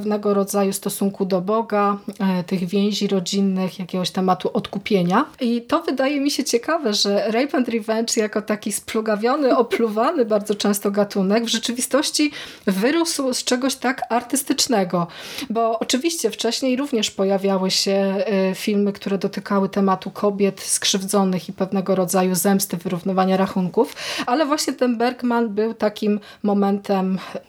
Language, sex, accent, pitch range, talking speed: Polish, female, native, 195-230 Hz, 130 wpm